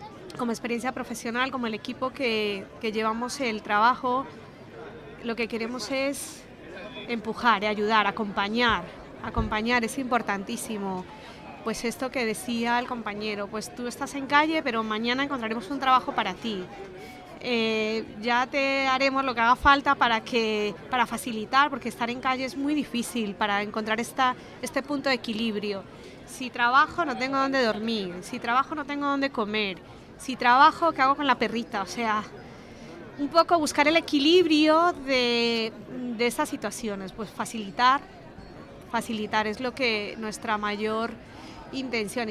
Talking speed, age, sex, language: 150 wpm, 20-39, female, Spanish